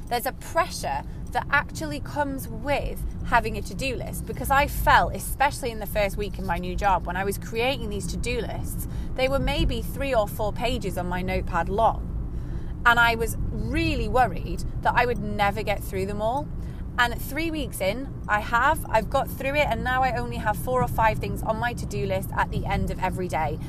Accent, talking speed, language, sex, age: British, 210 wpm, English, female, 20-39